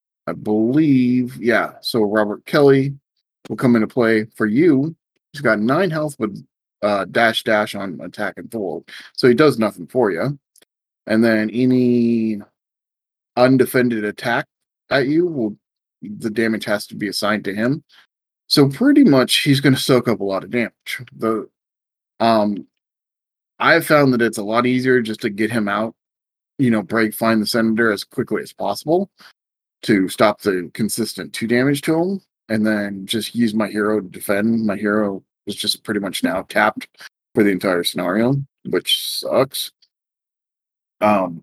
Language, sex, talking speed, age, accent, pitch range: English, male, 165 wpm, 30-49, American, 105-130 Hz